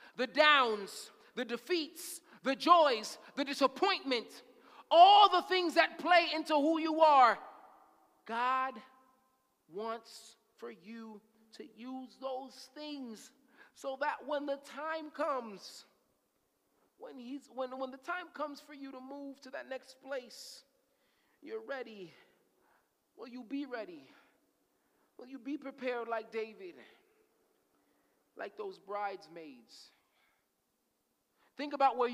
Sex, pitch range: male, 215-290 Hz